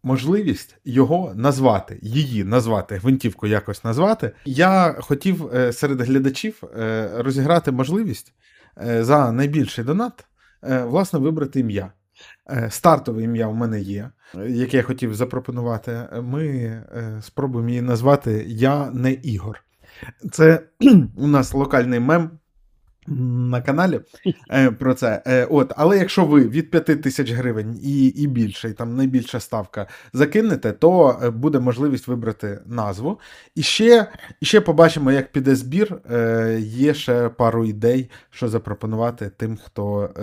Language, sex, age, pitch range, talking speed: Ukrainian, male, 20-39, 110-145 Hz, 125 wpm